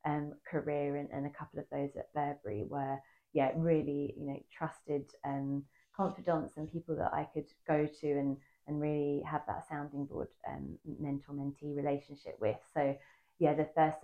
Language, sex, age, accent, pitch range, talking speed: English, female, 20-39, British, 140-155 Hz, 175 wpm